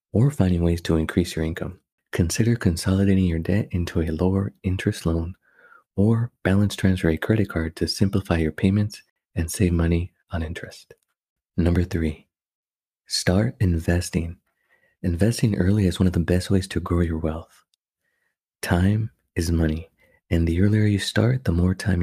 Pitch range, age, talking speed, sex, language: 85-100 Hz, 30-49, 160 wpm, male, English